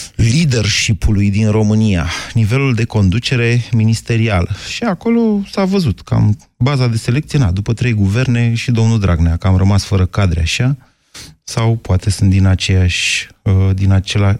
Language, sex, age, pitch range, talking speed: Romanian, male, 30-49, 100-130 Hz, 140 wpm